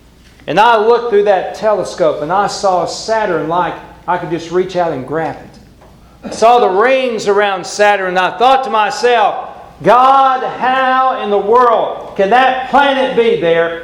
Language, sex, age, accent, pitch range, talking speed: English, male, 40-59, American, 155-235 Hz, 175 wpm